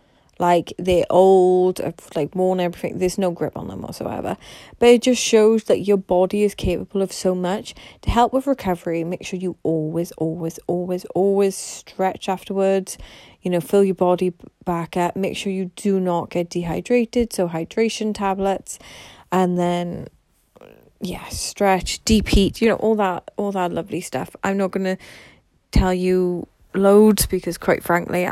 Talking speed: 165 wpm